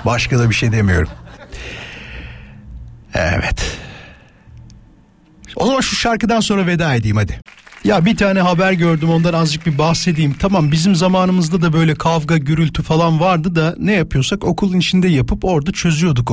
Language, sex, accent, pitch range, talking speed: Turkish, male, native, 135-185 Hz, 145 wpm